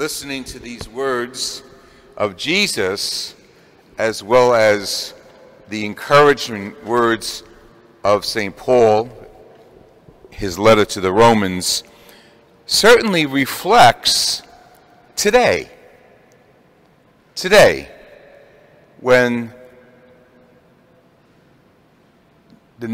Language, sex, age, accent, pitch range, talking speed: English, male, 40-59, American, 110-125 Hz, 70 wpm